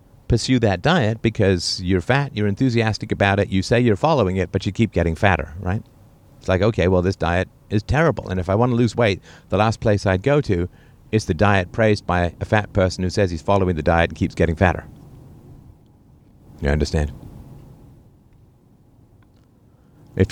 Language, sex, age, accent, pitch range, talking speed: English, male, 50-69, American, 95-120 Hz, 185 wpm